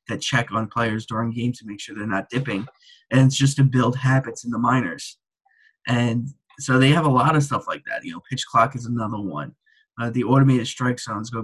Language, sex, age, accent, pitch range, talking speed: English, male, 20-39, American, 120-140 Hz, 235 wpm